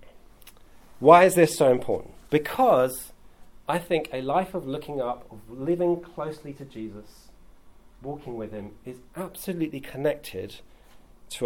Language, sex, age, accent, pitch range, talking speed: English, male, 40-59, British, 115-155 Hz, 130 wpm